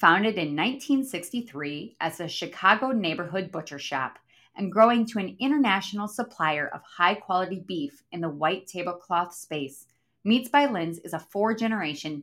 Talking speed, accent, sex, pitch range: 140 wpm, American, female, 165-225 Hz